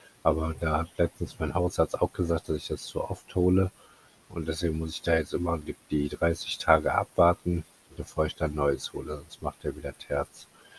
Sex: male